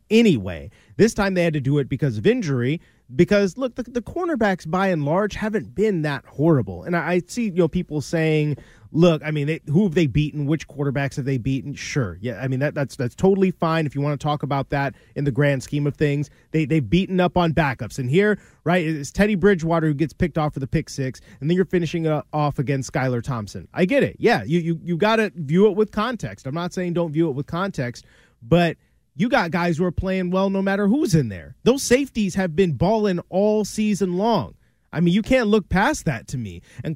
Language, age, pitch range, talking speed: English, 30-49, 145-200 Hz, 240 wpm